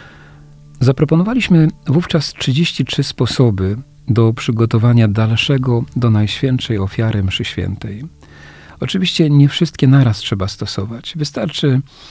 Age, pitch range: 40-59, 105-140 Hz